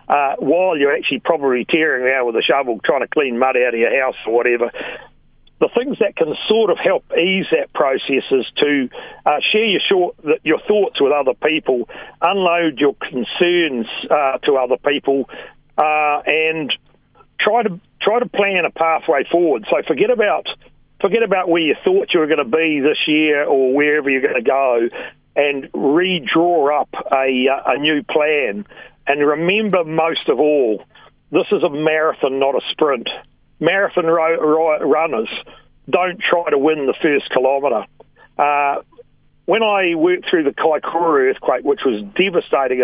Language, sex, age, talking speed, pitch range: English, male, 50-69, 165 wpm, 140-195 Hz